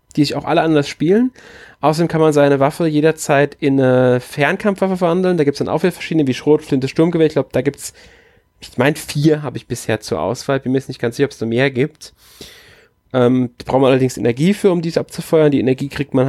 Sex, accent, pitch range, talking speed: male, German, 120-150 Hz, 245 wpm